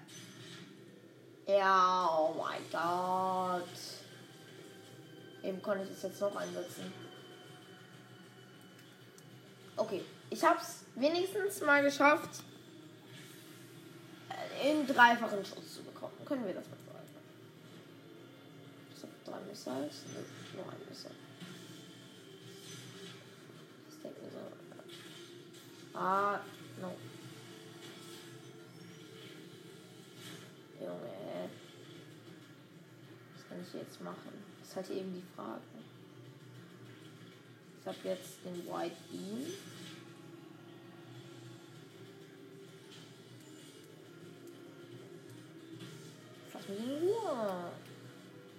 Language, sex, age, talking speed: German, female, 20-39, 65 wpm